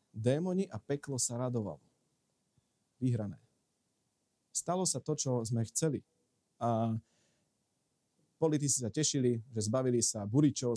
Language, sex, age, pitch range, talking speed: Slovak, male, 40-59, 120-160 Hz, 110 wpm